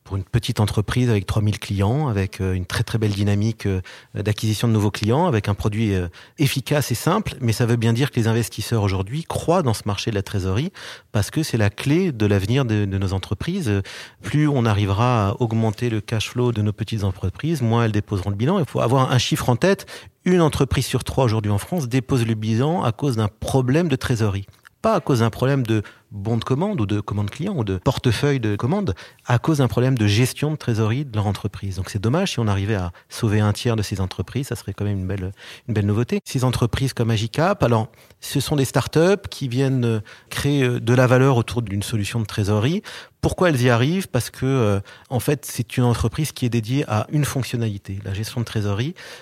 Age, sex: 40-59, male